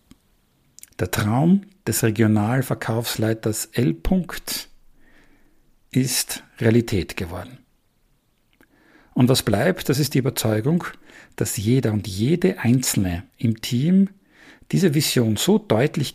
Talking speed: 95 wpm